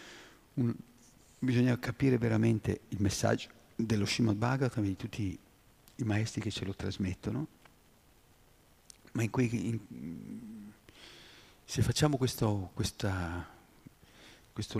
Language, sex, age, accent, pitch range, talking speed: Italian, male, 50-69, native, 95-115 Hz, 110 wpm